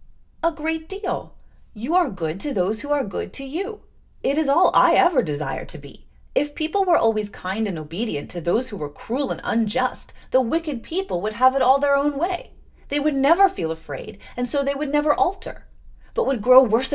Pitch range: 185-295 Hz